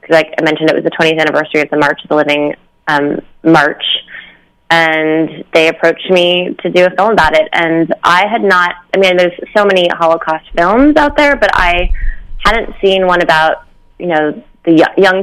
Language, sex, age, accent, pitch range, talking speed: English, female, 20-39, American, 155-175 Hz, 195 wpm